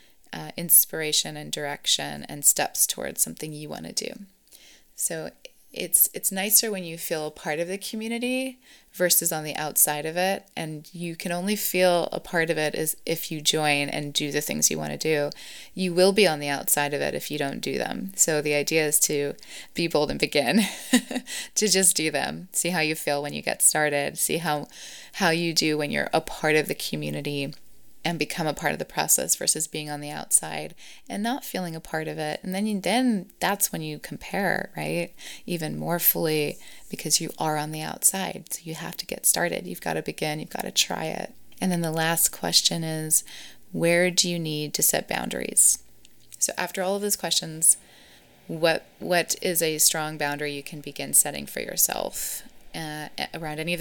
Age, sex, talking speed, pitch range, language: 20-39, female, 205 wpm, 150-180 Hz, English